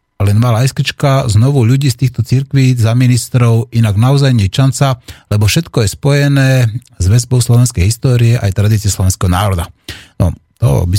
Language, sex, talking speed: Slovak, male, 165 wpm